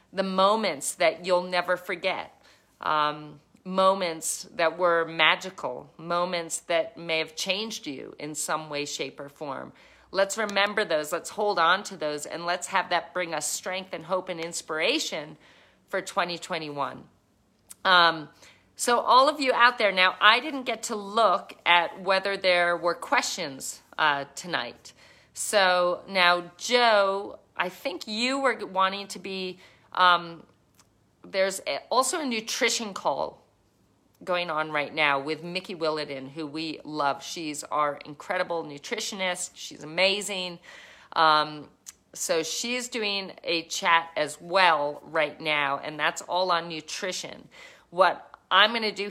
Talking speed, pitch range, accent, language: 145 wpm, 160-200 Hz, American, English